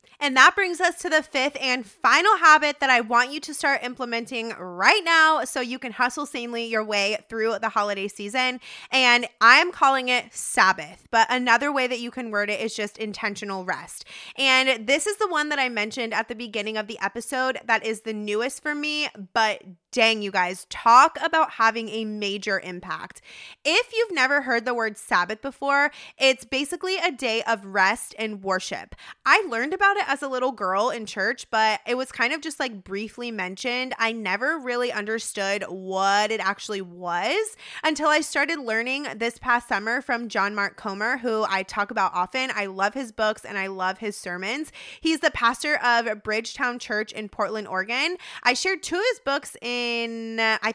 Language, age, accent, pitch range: English, 20-39, American, 215-270 Hz